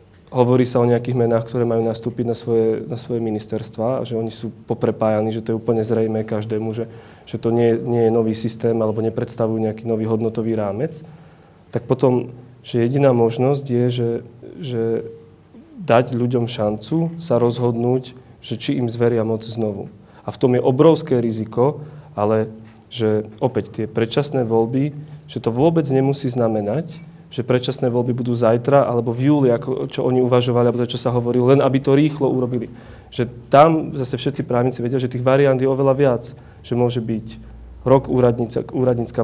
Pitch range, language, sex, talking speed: 115-130 Hz, Slovak, male, 175 wpm